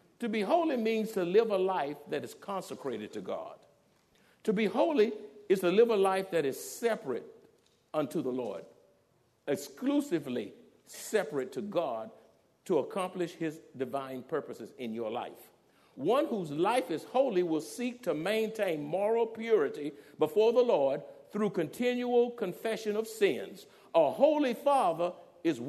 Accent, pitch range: American, 185-260 Hz